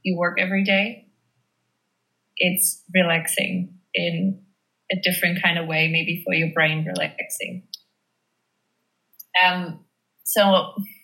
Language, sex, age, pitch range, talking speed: English, female, 20-39, 175-200 Hz, 105 wpm